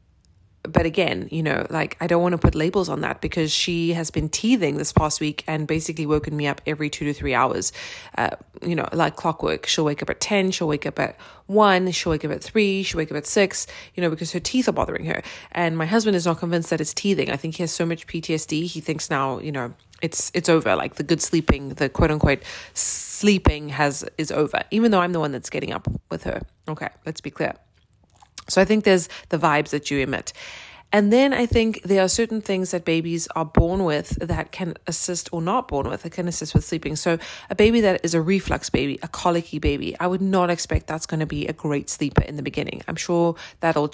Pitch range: 155-195 Hz